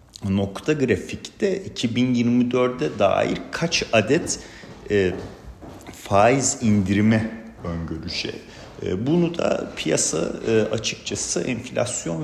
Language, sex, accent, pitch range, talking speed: Turkish, male, native, 95-115 Hz, 75 wpm